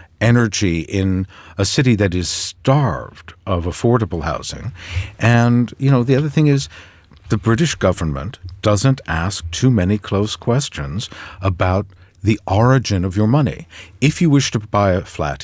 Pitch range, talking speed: 90-115 Hz, 150 wpm